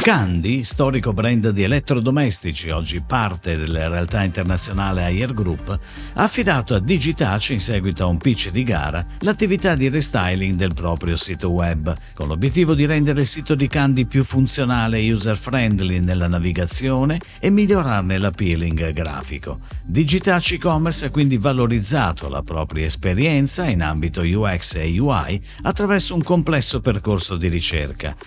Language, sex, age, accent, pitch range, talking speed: Italian, male, 50-69, native, 90-145 Hz, 140 wpm